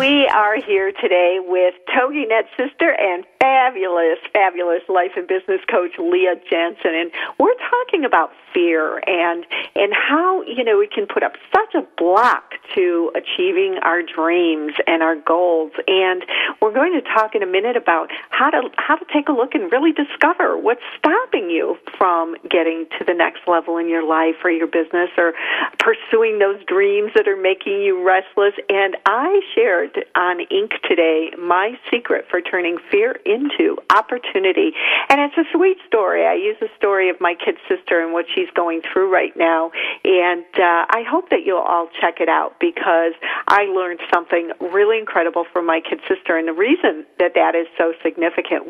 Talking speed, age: 175 wpm, 50-69